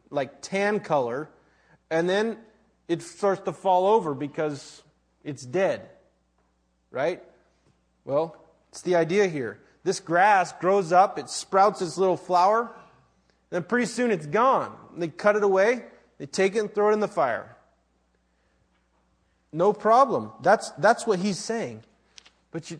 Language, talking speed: English, 140 wpm